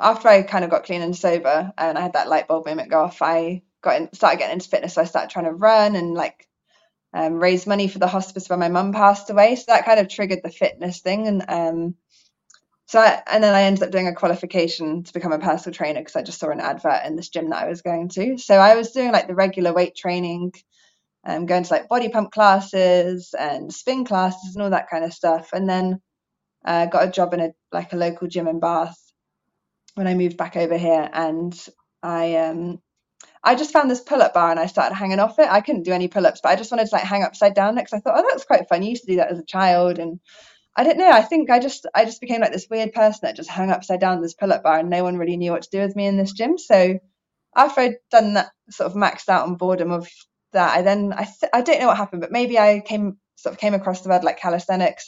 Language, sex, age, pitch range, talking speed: English, female, 20-39, 175-215 Hz, 265 wpm